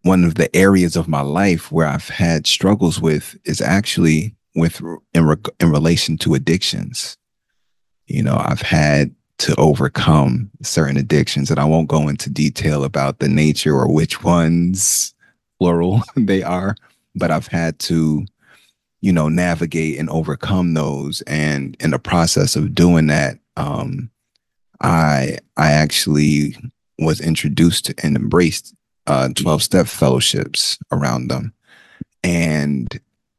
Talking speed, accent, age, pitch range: 135 wpm, American, 30-49, 75-90 Hz